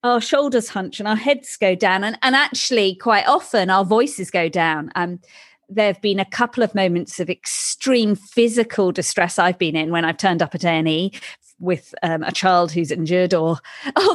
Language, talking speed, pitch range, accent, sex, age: English, 190 wpm, 185-275 Hz, British, female, 40-59